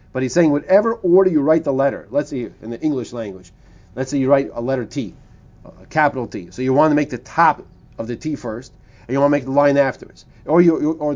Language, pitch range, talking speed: English, 125-160 Hz, 255 wpm